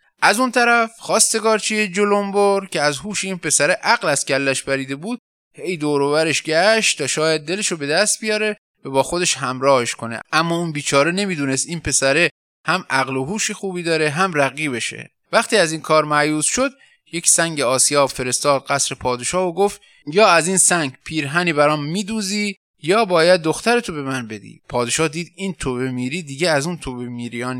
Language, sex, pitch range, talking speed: Persian, male, 135-200 Hz, 175 wpm